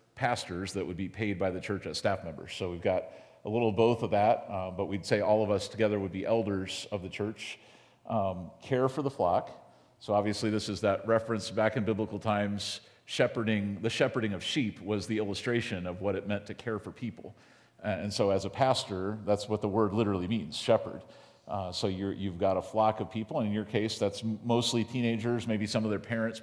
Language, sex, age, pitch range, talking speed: English, male, 40-59, 100-115 Hz, 220 wpm